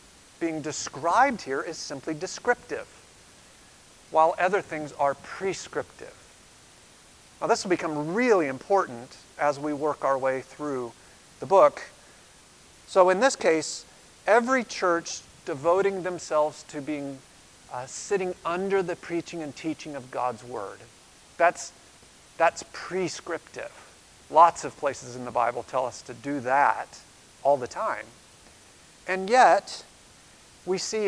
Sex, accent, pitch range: male, American, 135-170 Hz